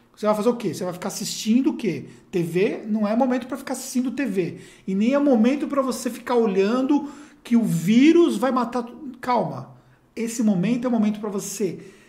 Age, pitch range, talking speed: 50-69, 220-270 Hz, 200 wpm